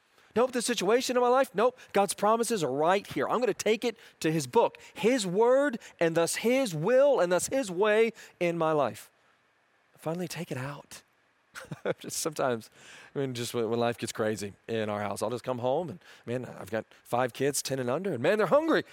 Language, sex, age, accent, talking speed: English, male, 40-59, American, 210 wpm